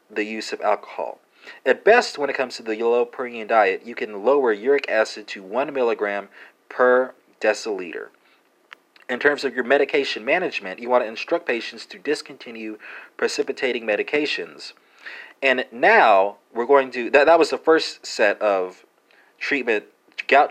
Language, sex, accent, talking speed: English, male, American, 155 wpm